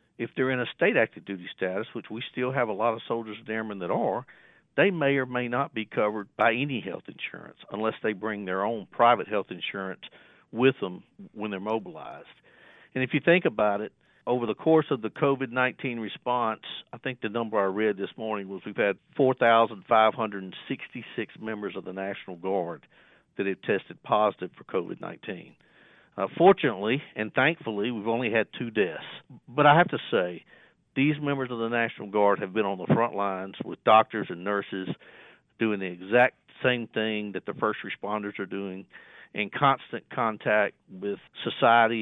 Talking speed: 180 wpm